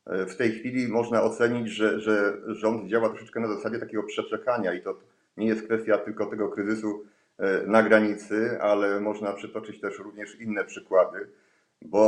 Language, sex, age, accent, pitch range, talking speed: Polish, male, 40-59, native, 100-115 Hz, 160 wpm